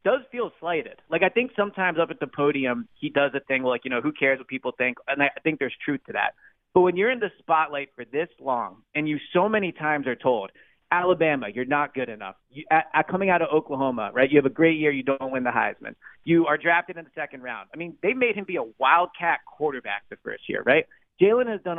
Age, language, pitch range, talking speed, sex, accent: 30-49, English, 135-180 Hz, 245 wpm, male, American